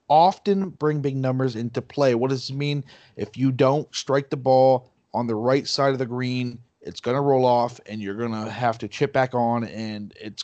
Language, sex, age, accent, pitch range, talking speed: English, male, 30-49, American, 120-140 Hz, 225 wpm